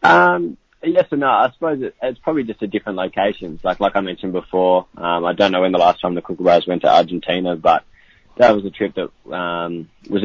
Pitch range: 85-95 Hz